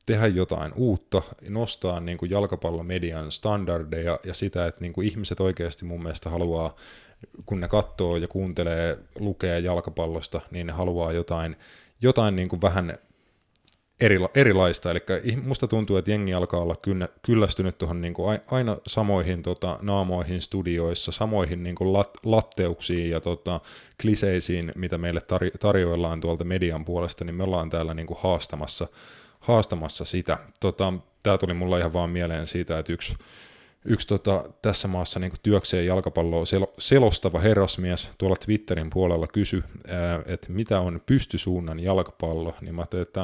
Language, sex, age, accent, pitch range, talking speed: Finnish, male, 20-39, native, 85-100 Hz, 145 wpm